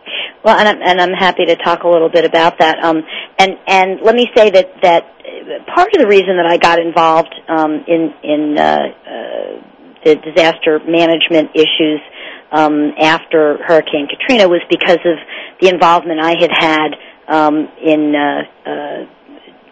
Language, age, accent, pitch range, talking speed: English, 50-69, American, 150-170 Hz, 160 wpm